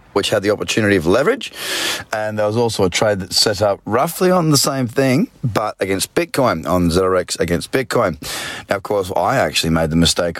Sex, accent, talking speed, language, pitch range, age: male, Australian, 200 wpm, English, 90-120 Hz, 30-49